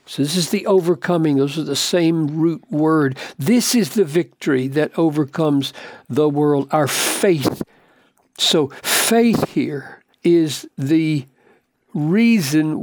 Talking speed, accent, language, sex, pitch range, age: 125 wpm, American, English, male, 135-185 Hz, 60-79